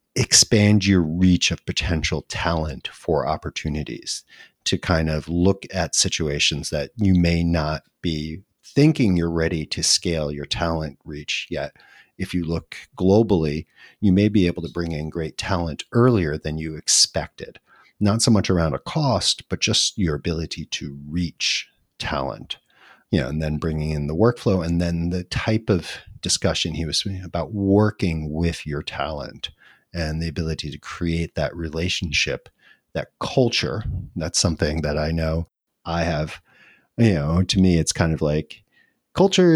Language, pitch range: English, 80-100 Hz